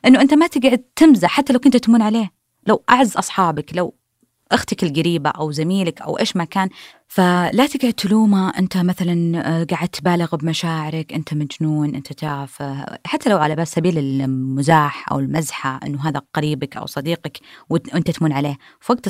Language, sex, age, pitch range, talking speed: Arabic, female, 20-39, 155-215 Hz, 165 wpm